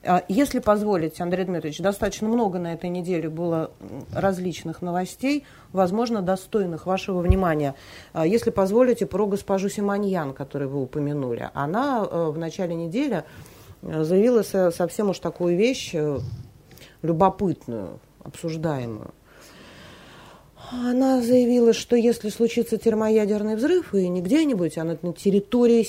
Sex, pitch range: female, 165-220 Hz